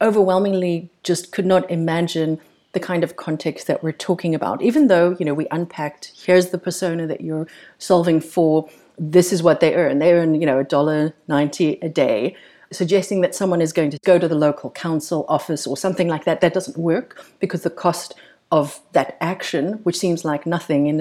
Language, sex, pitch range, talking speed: English, female, 160-190 Hz, 200 wpm